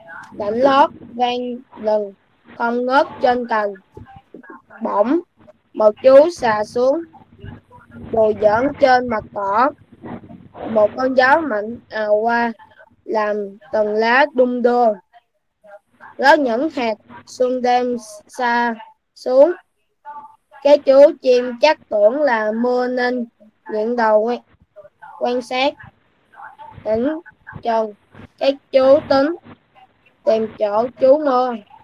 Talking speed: 110 wpm